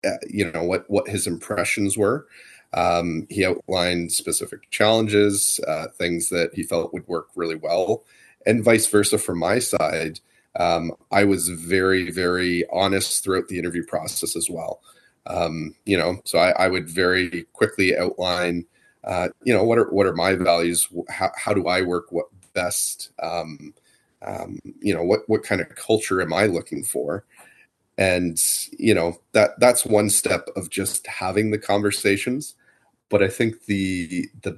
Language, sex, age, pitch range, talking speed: English, male, 30-49, 85-100 Hz, 165 wpm